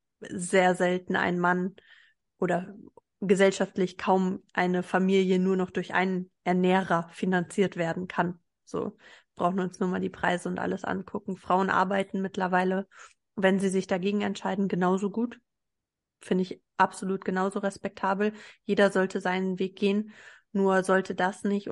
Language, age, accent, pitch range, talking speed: German, 30-49, German, 185-200 Hz, 145 wpm